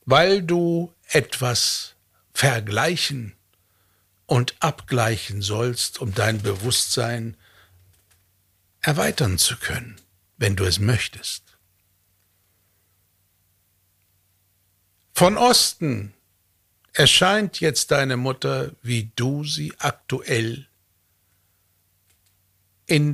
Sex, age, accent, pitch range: male, 60-79, German, 95-125 Hz